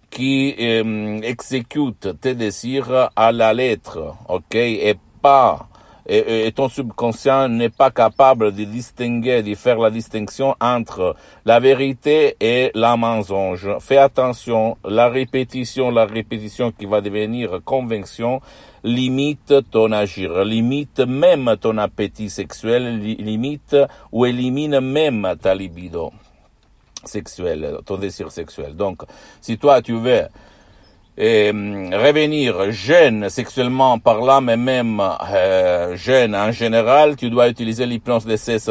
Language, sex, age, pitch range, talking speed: Italian, male, 60-79, 105-130 Hz, 120 wpm